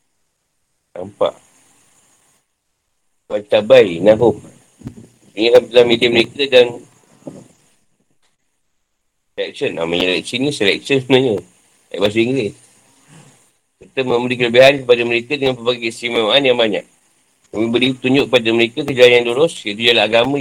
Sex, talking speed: male, 105 wpm